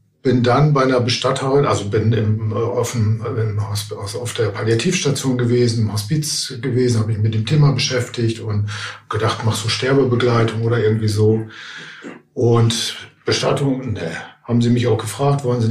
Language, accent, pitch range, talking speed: German, German, 115-140 Hz, 170 wpm